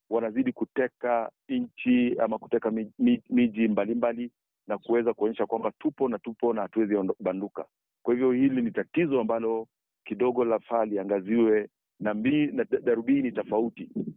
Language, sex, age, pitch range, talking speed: Swahili, male, 50-69, 105-125 Hz, 135 wpm